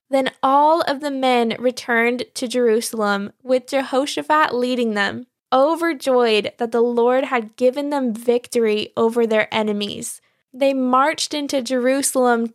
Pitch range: 230-275 Hz